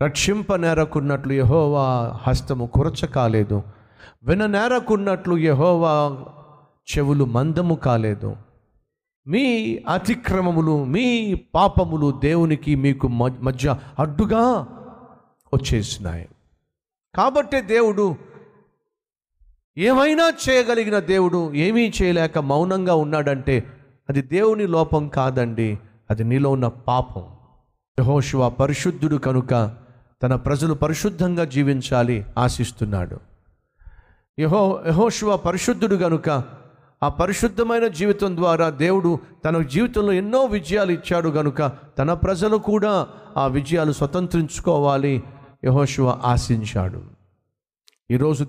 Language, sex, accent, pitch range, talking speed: Telugu, male, native, 125-185 Hz, 90 wpm